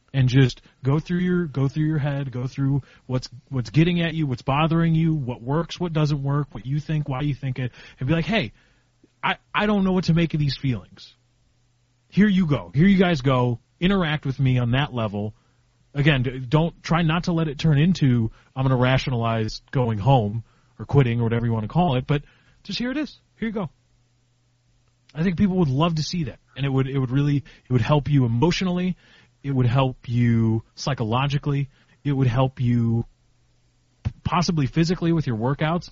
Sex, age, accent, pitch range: male, 30-49, American, 120-160 Hz